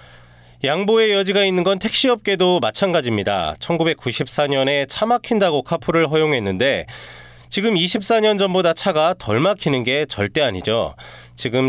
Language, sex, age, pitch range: Korean, male, 30-49, 115-190 Hz